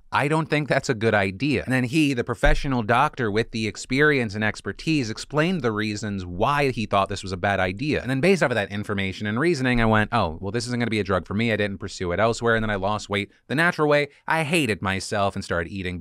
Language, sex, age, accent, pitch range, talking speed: English, male, 30-49, American, 100-130 Hz, 260 wpm